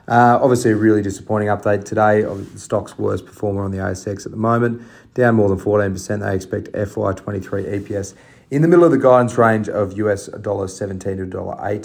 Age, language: 30-49, English